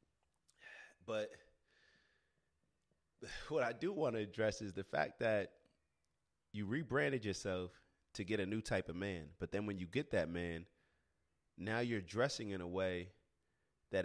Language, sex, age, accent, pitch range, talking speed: English, male, 30-49, American, 90-115 Hz, 150 wpm